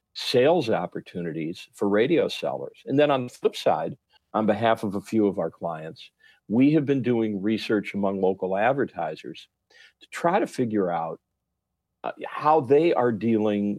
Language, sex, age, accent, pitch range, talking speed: English, male, 50-69, American, 100-135 Hz, 160 wpm